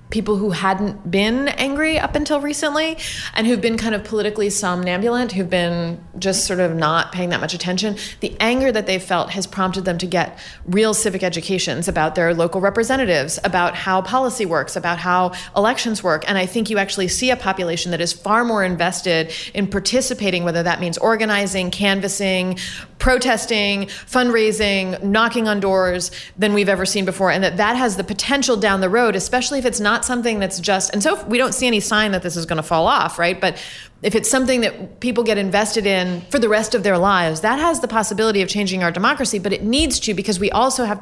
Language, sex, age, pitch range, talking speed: English, female, 30-49, 180-225 Hz, 210 wpm